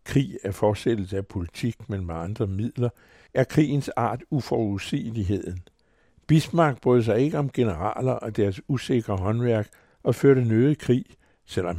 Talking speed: 145 wpm